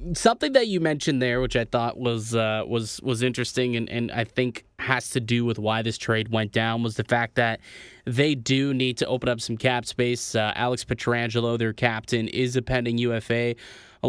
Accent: American